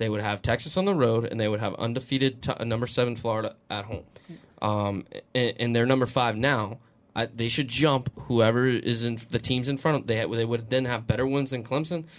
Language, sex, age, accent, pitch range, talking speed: English, male, 20-39, American, 110-135 Hz, 215 wpm